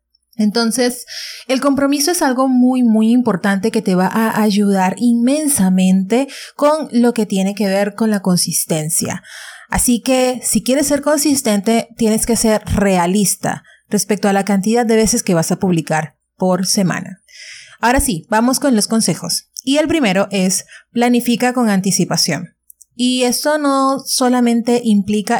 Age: 30-49